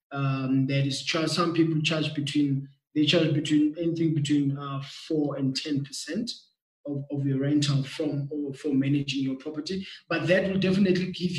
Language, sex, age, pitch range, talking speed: English, male, 20-39, 140-165 Hz, 170 wpm